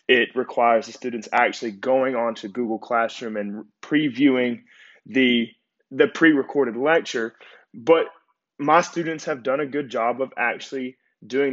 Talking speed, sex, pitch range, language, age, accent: 140 wpm, male, 115-145 Hz, English, 20-39, American